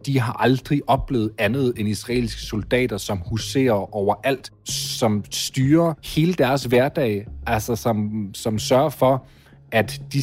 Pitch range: 110-140 Hz